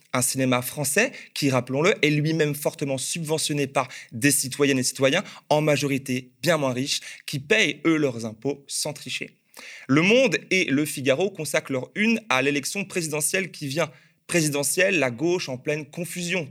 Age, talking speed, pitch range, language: 20-39, 165 wpm, 135-175 Hz, French